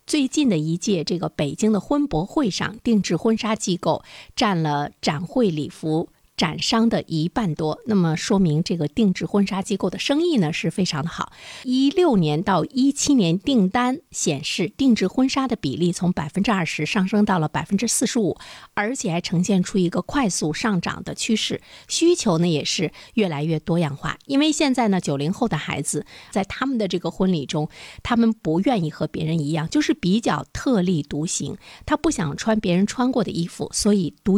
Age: 50-69